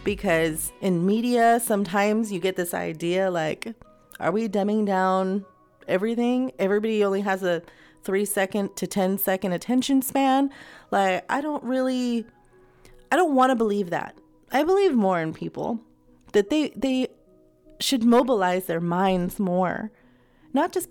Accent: American